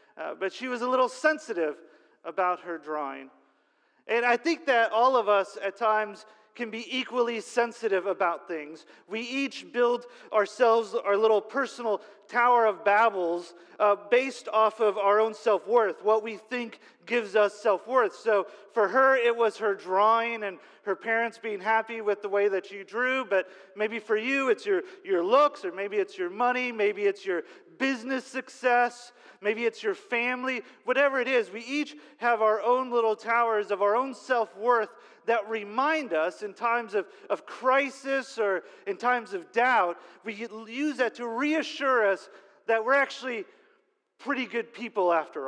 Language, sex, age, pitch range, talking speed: English, male, 40-59, 210-260 Hz, 170 wpm